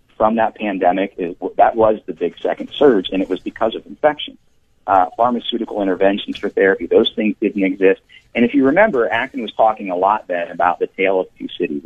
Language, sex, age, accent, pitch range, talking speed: English, male, 40-59, American, 95-115 Hz, 205 wpm